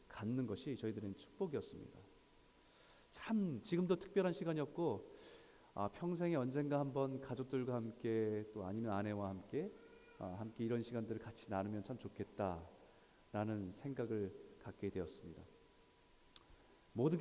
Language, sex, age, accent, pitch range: Korean, male, 40-59, native, 105-165 Hz